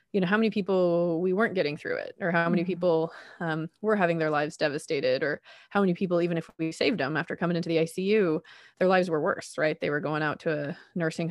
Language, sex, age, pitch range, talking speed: English, female, 20-39, 155-175 Hz, 245 wpm